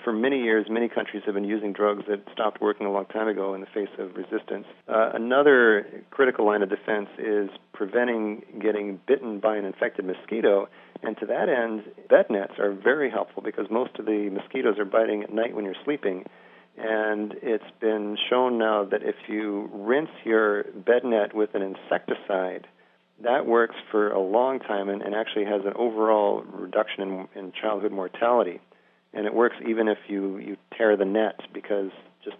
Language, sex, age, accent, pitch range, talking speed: English, male, 40-59, American, 100-110 Hz, 185 wpm